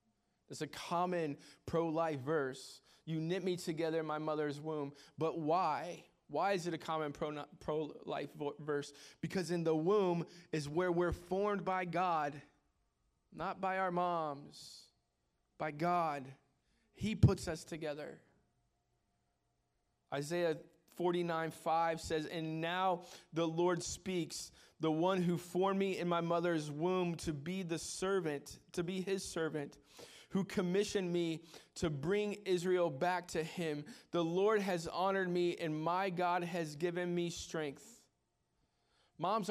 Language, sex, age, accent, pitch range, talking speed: English, male, 20-39, American, 155-185 Hz, 140 wpm